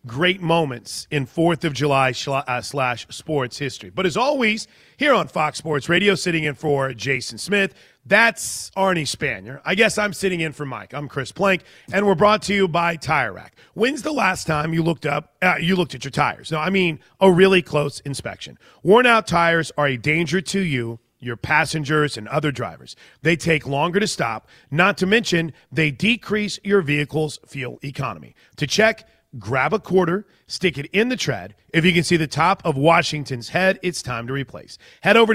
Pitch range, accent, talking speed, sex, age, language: 135-185 Hz, American, 195 wpm, male, 40-59, English